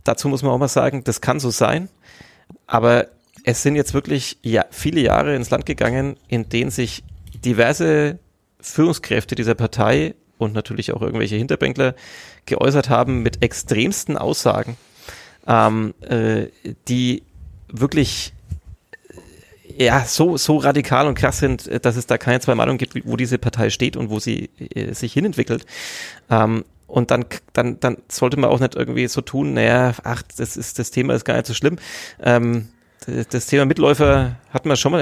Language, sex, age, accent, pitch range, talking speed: German, male, 30-49, German, 110-135 Hz, 165 wpm